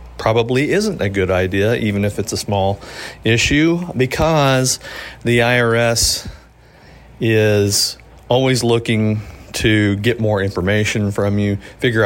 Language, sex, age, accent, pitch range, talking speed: English, male, 40-59, American, 100-125 Hz, 120 wpm